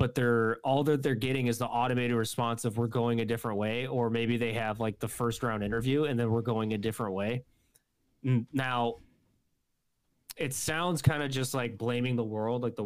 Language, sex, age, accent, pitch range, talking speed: English, male, 20-39, American, 110-125 Hz, 205 wpm